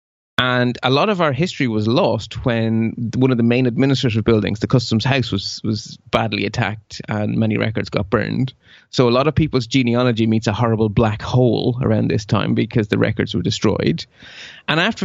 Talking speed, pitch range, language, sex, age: 190 wpm, 110-135 Hz, English, male, 30-49